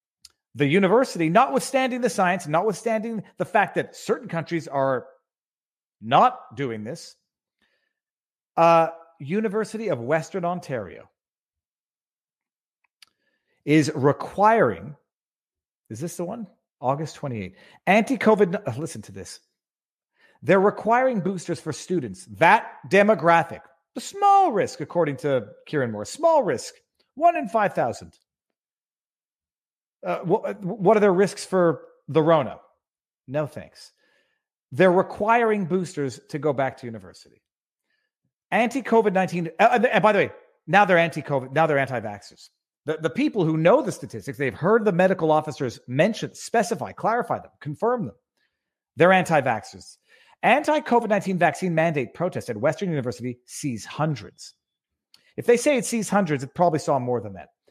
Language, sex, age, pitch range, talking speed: English, male, 40-59, 145-220 Hz, 130 wpm